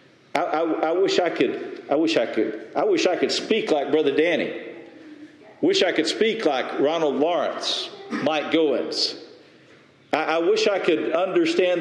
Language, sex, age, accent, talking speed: English, male, 50-69, American, 170 wpm